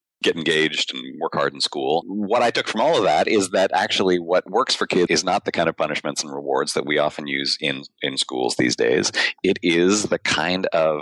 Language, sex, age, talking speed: English, male, 30-49, 235 wpm